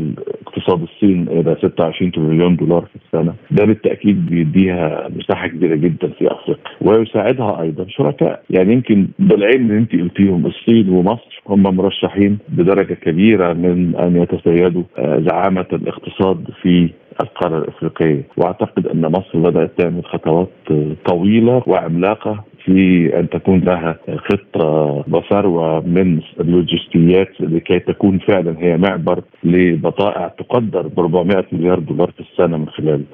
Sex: male